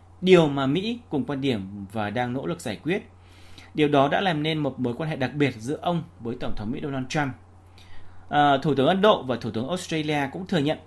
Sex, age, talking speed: male, 20-39, 235 wpm